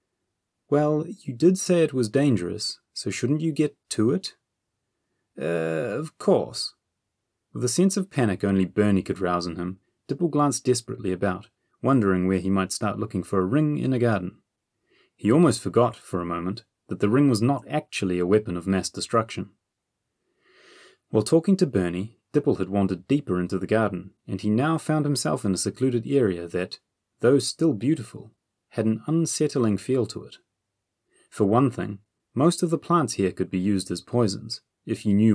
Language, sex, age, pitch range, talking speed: English, male, 30-49, 95-135 Hz, 180 wpm